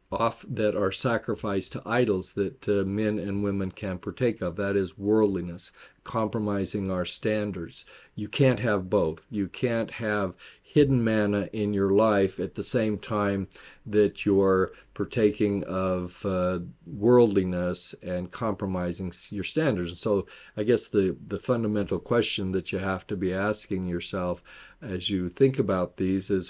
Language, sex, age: English, male, 40-59